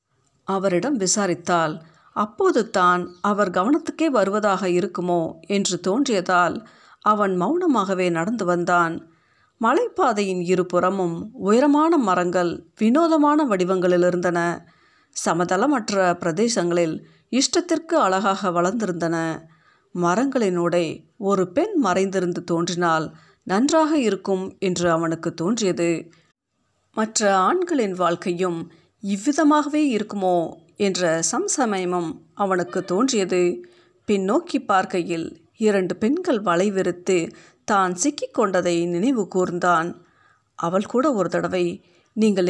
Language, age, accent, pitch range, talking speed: Tamil, 50-69, native, 175-240 Hz, 80 wpm